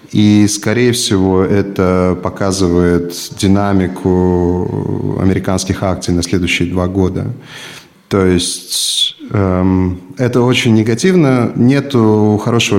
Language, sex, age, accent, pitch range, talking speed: Russian, male, 30-49, native, 95-115 Hz, 95 wpm